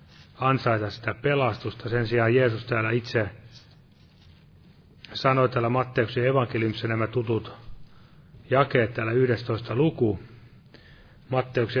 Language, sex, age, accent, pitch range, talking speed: Finnish, male, 40-59, native, 115-135 Hz, 95 wpm